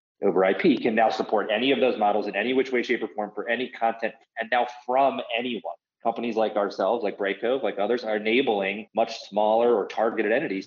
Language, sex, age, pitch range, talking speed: English, male, 30-49, 95-120 Hz, 215 wpm